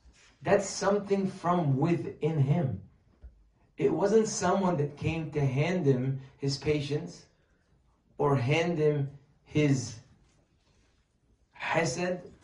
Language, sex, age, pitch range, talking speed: English, male, 30-49, 120-160 Hz, 95 wpm